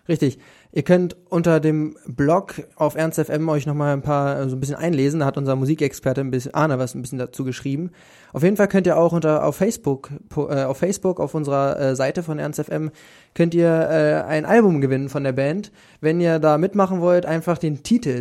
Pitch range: 135-165 Hz